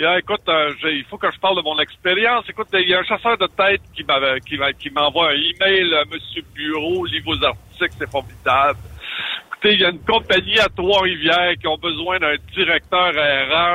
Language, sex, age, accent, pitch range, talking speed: French, male, 60-79, French, 140-190 Hz, 210 wpm